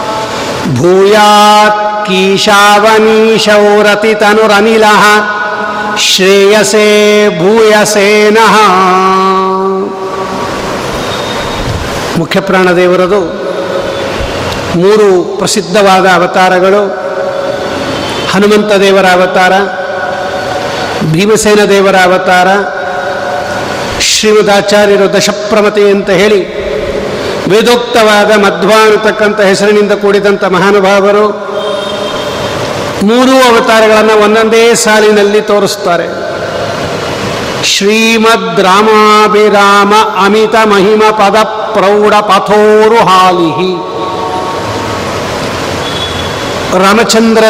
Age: 60-79